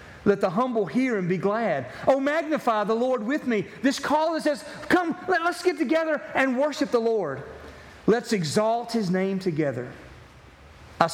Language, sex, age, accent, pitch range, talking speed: English, male, 40-59, American, 140-220 Hz, 165 wpm